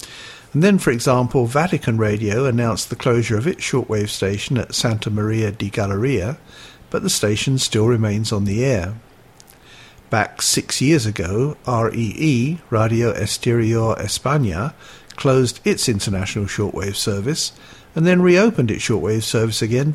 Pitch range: 110-140 Hz